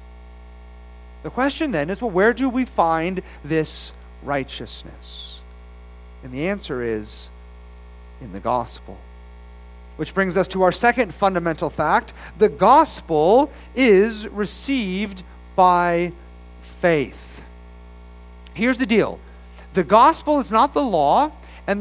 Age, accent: 40-59, American